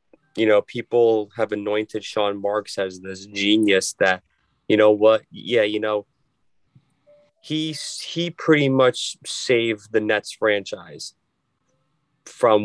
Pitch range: 100-120 Hz